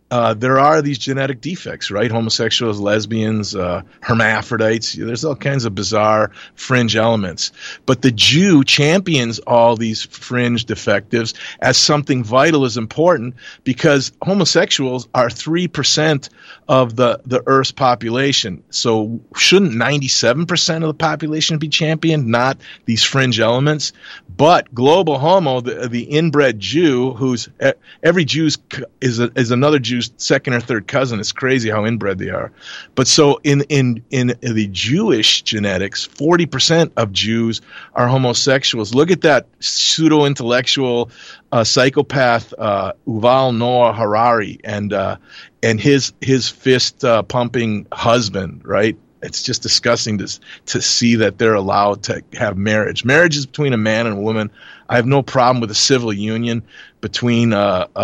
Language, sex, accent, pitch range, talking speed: English, male, American, 110-140 Hz, 145 wpm